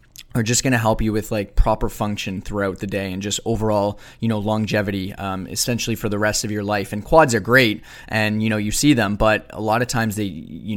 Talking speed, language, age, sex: 240 wpm, English, 20-39, male